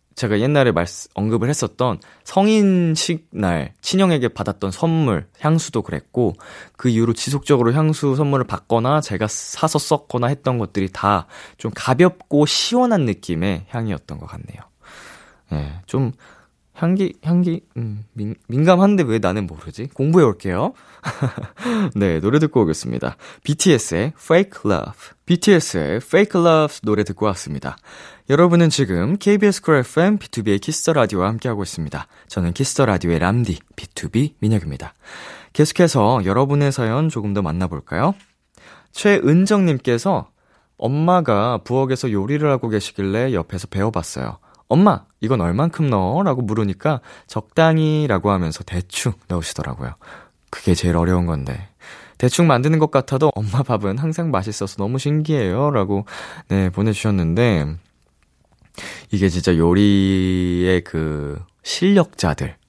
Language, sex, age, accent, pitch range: Korean, male, 20-39, native, 95-150 Hz